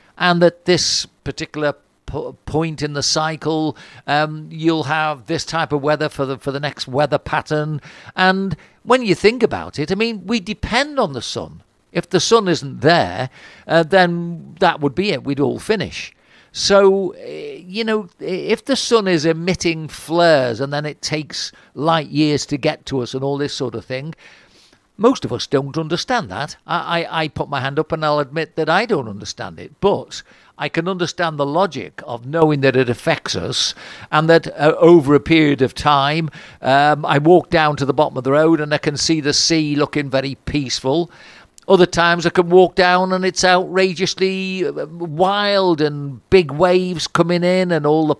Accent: British